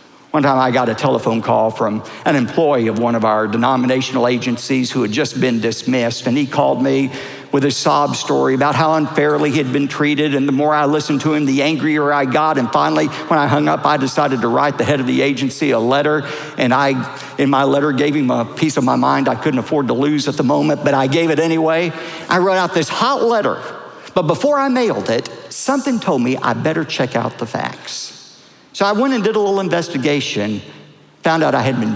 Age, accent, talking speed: 50-69, American, 225 wpm